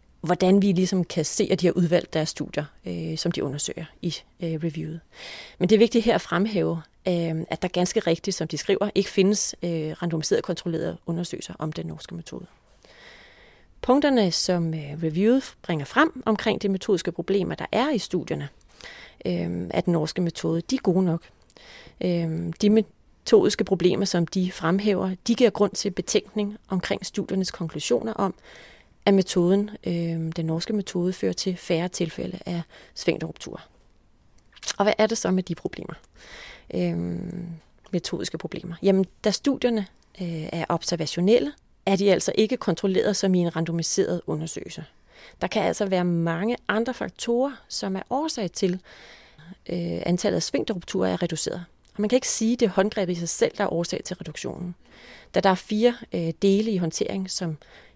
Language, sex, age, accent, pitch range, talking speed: Danish, female, 30-49, native, 165-205 Hz, 170 wpm